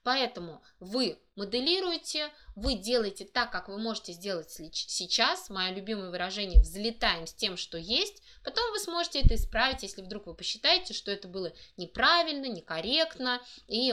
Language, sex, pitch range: Russian, female, 190-255 Hz